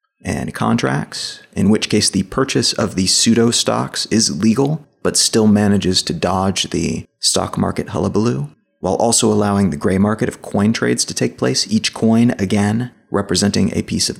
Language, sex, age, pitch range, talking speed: English, male, 30-49, 100-125 Hz, 175 wpm